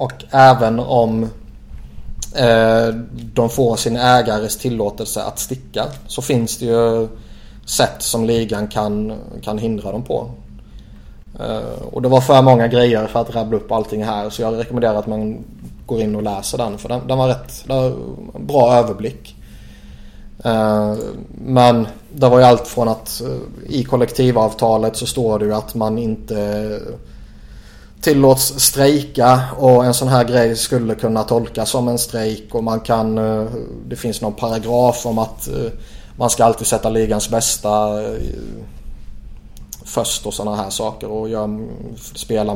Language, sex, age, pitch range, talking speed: Swedish, male, 20-39, 110-120 Hz, 150 wpm